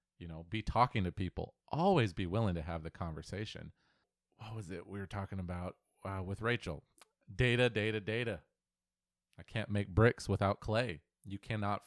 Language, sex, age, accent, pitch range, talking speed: English, male, 30-49, American, 90-115 Hz, 170 wpm